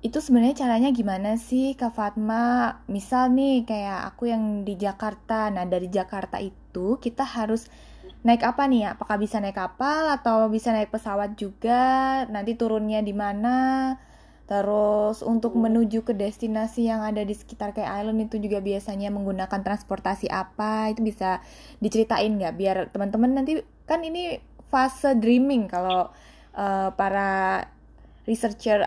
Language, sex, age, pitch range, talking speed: Indonesian, female, 20-39, 205-245 Hz, 145 wpm